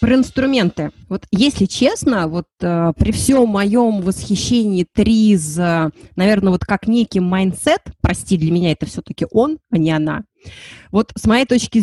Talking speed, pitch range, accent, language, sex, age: 150 wpm, 185-230 Hz, native, Russian, female, 20-39